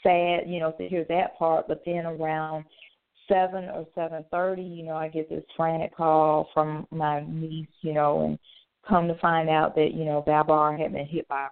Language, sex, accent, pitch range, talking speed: English, female, American, 135-155 Hz, 200 wpm